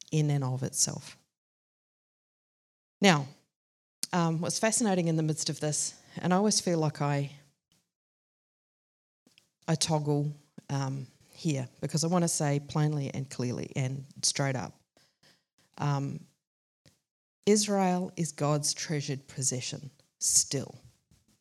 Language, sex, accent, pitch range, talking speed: English, female, Australian, 135-170 Hz, 115 wpm